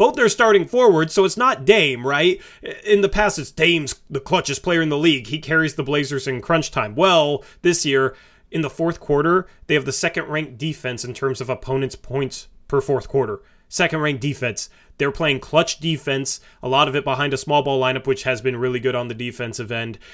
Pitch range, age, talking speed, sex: 125-155 Hz, 30-49, 210 wpm, male